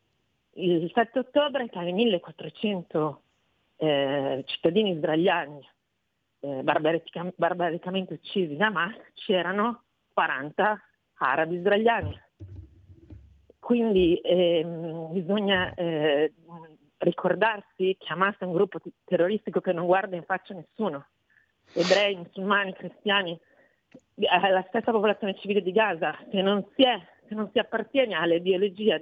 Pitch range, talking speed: 175-225 Hz, 115 wpm